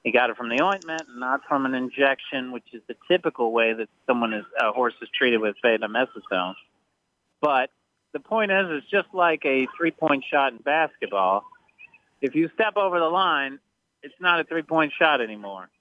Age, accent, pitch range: 40-59, American, 125-160 Hz